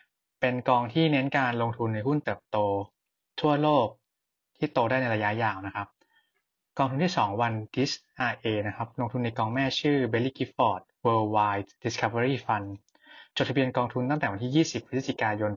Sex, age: male, 20-39